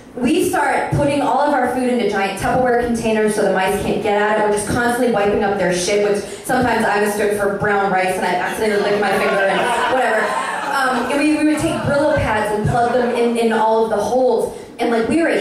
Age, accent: 20-39, American